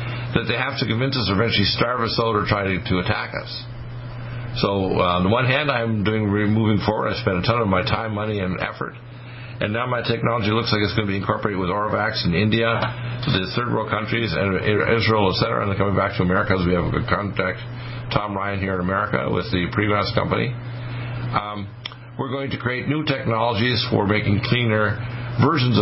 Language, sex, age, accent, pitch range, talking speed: English, male, 50-69, American, 105-125 Hz, 215 wpm